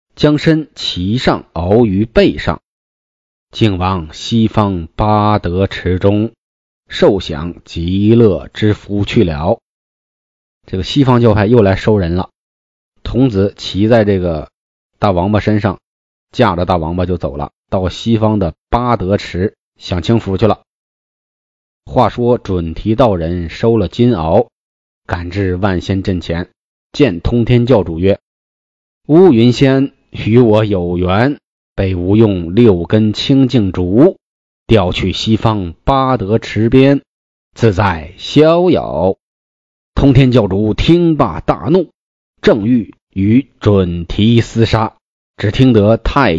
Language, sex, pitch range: Chinese, male, 90-115 Hz